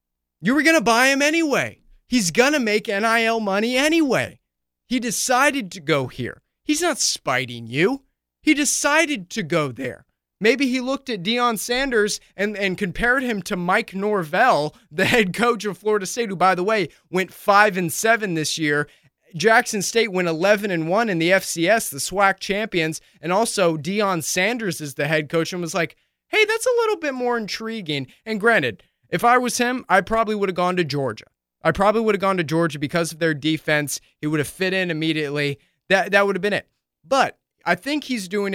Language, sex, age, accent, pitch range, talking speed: English, male, 30-49, American, 160-230 Hz, 200 wpm